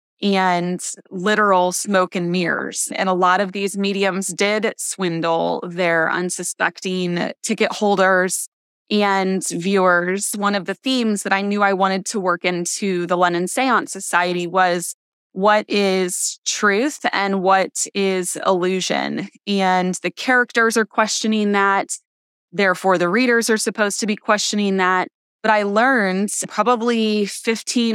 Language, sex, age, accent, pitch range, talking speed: English, female, 20-39, American, 185-210 Hz, 135 wpm